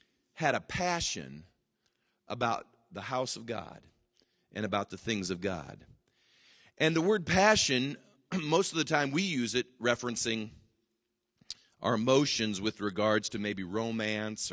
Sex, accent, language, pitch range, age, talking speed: male, American, English, 100-140 Hz, 40-59, 135 wpm